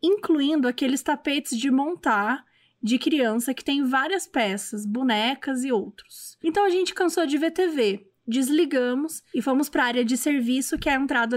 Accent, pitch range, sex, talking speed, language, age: Brazilian, 245-320 Hz, female, 175 wpm, Portuguese, 20-39